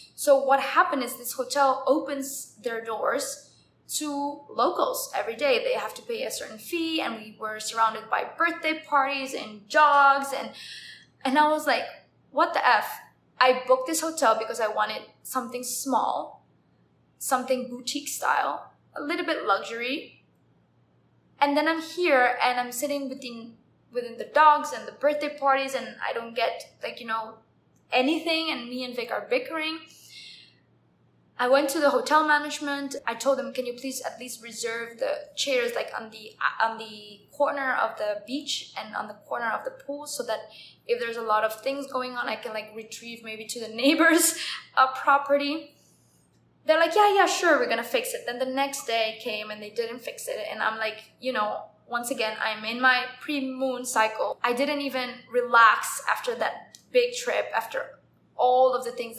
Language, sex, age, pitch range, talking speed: English, female, 20-39, 230-295 Hz, 185 wpm